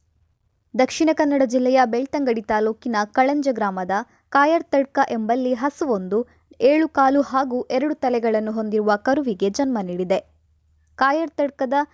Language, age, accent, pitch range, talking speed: Kannada, 20-39, native, 205-275 Hz, 100 wpm